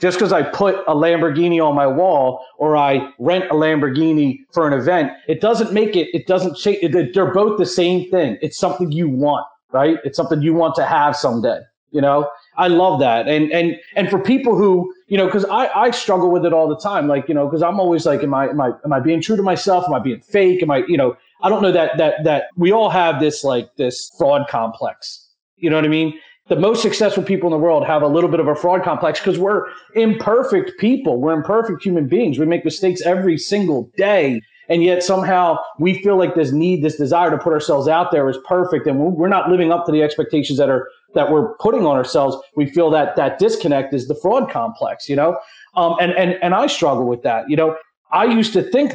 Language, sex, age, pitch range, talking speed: English, male, 30-49, 150-185 Hz, 240 wpm